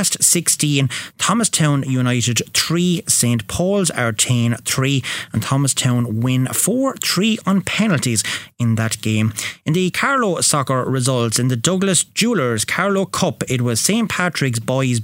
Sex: male